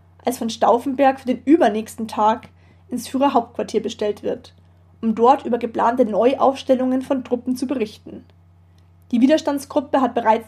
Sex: female